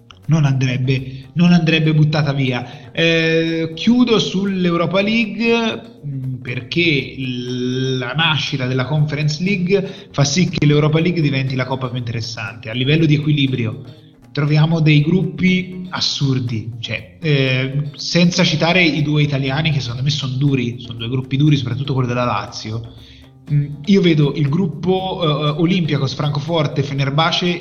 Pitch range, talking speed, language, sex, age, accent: 135-165 Hz, 140 wpm, Italian, male, 20-39, native